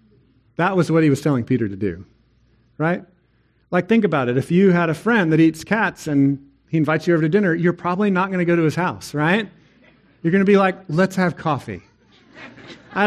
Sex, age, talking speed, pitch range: male, 40-59, 220 wpm, 125-175 Hz